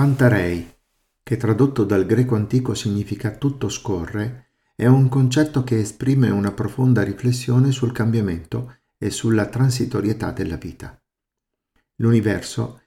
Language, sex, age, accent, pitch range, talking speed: Italian, male, 50-69, native, 100-125 Hz, 115 wpm